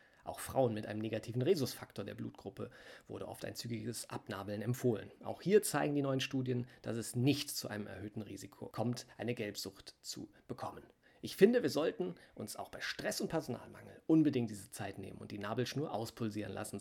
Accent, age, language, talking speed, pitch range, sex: German, 40-59, German, 180 wpm, 105-130 Hz, male